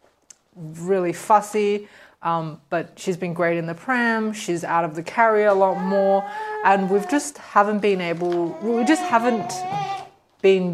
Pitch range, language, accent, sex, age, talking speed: 170-205 Hz, English, Australian, female, 20-39, 155 wpm